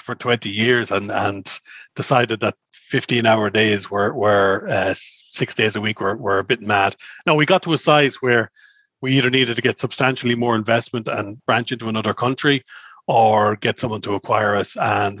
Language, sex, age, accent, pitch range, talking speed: English, male, 30-49, Irish, 105-130 Hz, 190 wpm